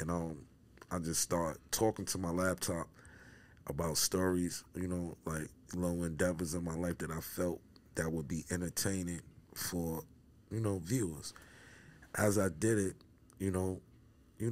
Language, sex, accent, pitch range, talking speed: English, male, American, 85-95 Hz, 155 wpm